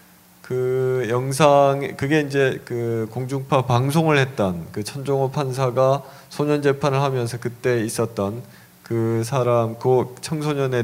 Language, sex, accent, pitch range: Korean, male, native, 115-145 Hz